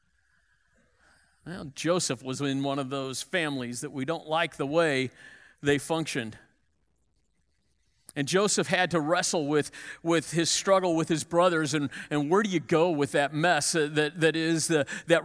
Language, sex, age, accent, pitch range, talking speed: English, male, 50-69, American, 130-180 Hz, 165 wpm